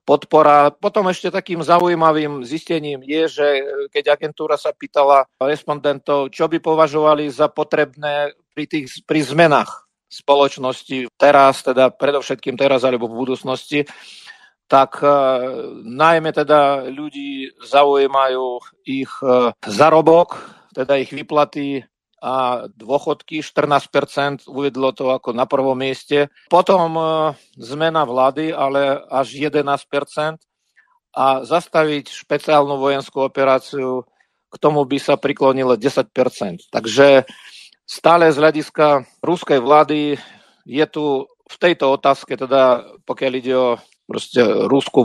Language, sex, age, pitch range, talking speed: Slovak, male, 50-69, 135-155 Hz, 110 wpm